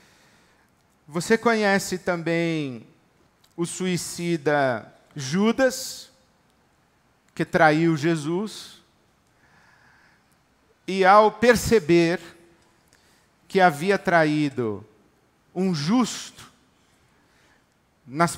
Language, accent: Portuguese, Brazilian